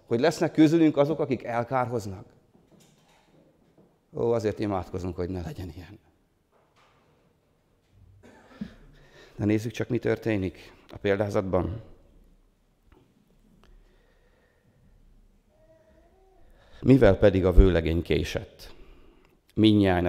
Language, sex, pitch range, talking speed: Hungarian, male, 90-115 Hz, 80 wpm